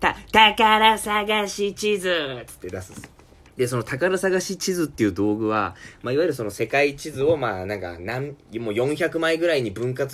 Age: 20-39